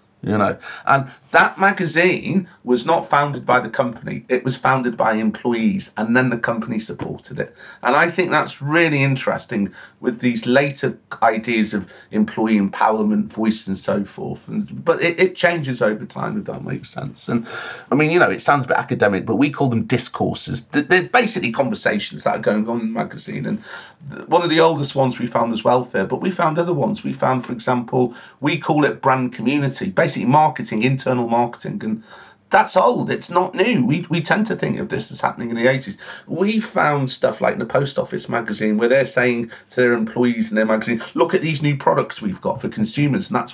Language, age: English, 40-59